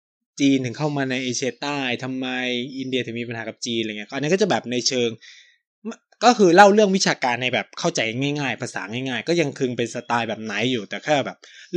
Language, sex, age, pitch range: Thai, male, 20-39, 120-155 Hz